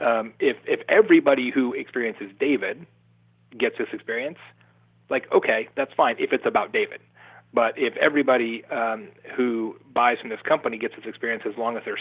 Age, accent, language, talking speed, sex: 30-49, American, English, 170 wpm, male